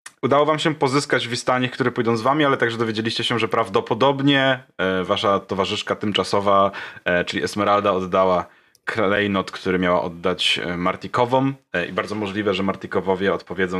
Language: Polish